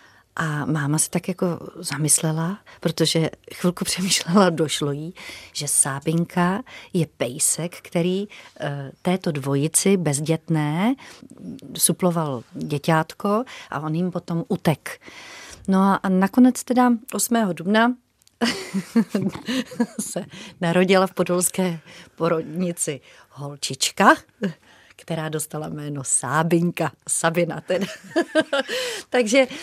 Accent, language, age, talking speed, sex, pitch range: native, Czech, 40-59, 95 wpm, female, 165-215 Hz